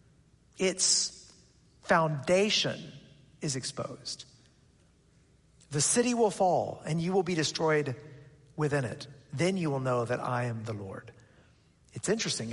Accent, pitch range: American, 160-215 Hz